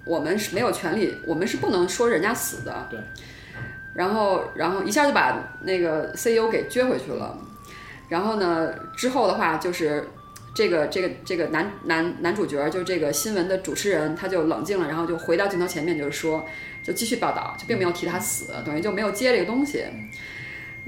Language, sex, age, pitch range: Chinese, female, 20-39, 165-220 Hz